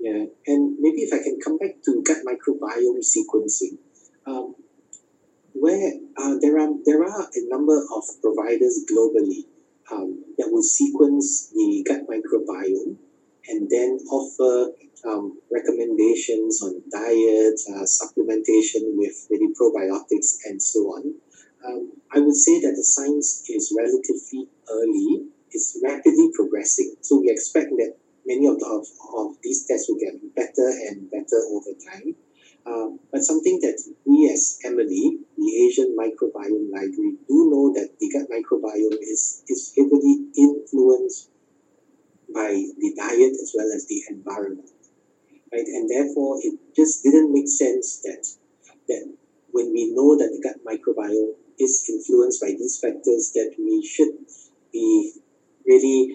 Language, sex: English, male